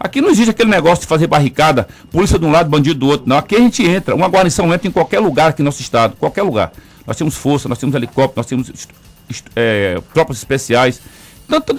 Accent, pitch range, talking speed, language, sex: Brazilian, 130-185 Hz, 245 wpm, Portuguese, male